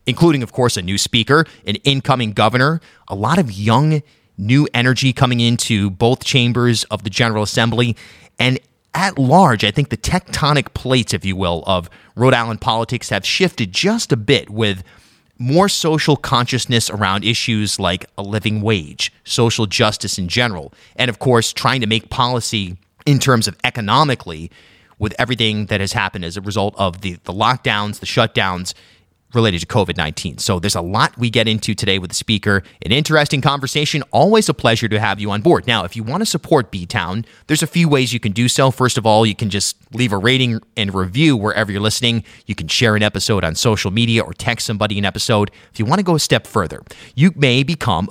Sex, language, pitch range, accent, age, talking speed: male, English, 105-130 Hz, American, 30-49, 200 wpm